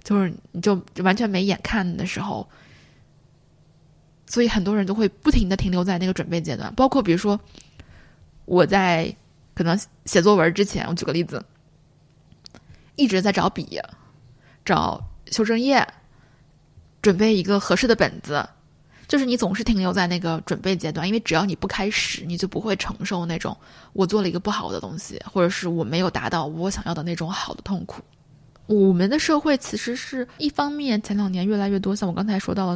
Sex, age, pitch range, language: female, 20-39, 170-205 Hz, Chinese